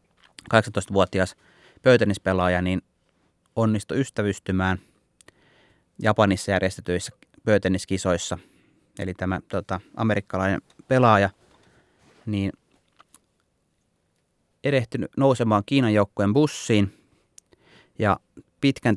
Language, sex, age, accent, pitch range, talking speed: Finnish, male, 30-49, native, 95-110 Hz, 65 wpm